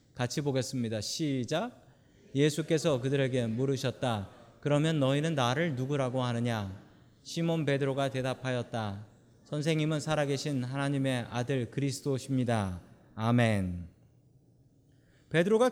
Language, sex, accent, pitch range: Korean, male, native, 130-190 Hz